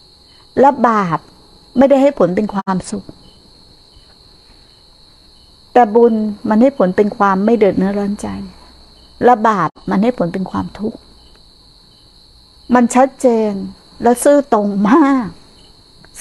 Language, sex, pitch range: Thai, female, 195-255 Hz